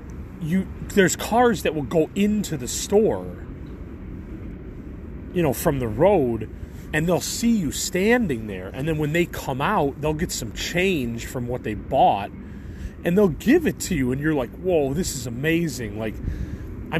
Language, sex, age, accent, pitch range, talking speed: English, male, 30-49, American, 100-160 Hz, 175 wpm